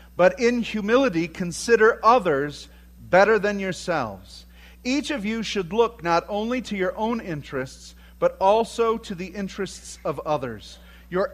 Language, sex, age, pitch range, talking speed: English, male, 40-59, 175-245 Hz, 145 wpm